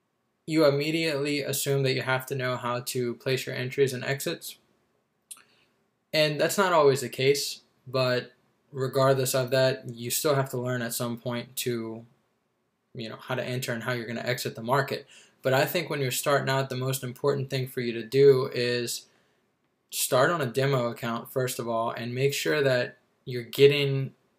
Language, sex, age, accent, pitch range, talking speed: English, male, 20-39, American, 125-140 Hz, 185 wpm